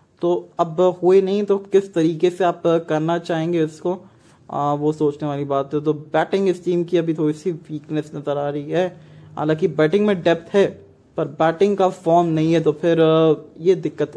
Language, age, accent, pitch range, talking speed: English, 20-39, Indian, 155-175 Hz, 195 wpm